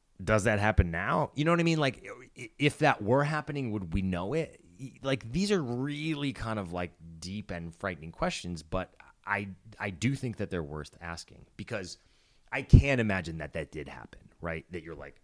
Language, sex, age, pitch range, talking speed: English, male, 30-49, 90-135 Hz, 195 wpm